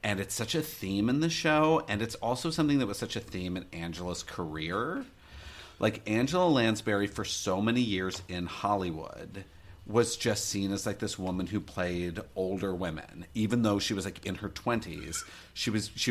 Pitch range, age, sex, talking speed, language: 90-110 Hz, 40-59, male, 190 wpm, English